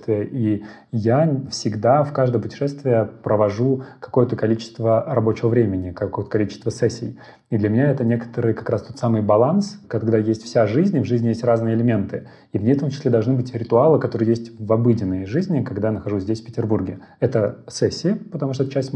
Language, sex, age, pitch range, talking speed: Russian, male, 30-49, 110-125 Hz, 190 wpm